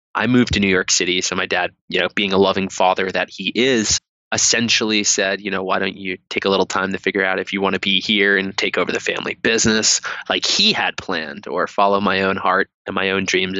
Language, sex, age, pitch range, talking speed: English, male, 20-39, 95-110 Hz, 250 wpm